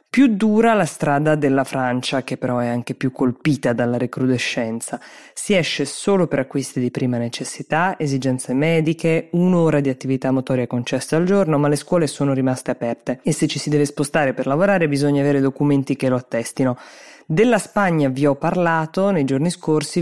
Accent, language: native, Italian